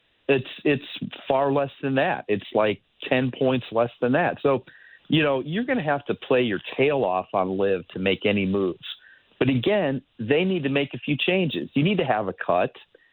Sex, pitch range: male, 110-140 Hz